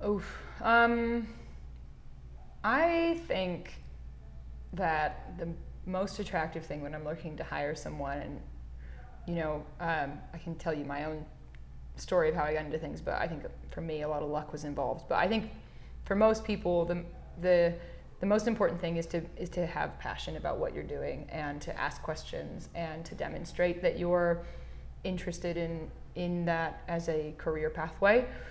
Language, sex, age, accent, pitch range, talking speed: English, female, 20-39, American, 150-180 Hz, 175 wpm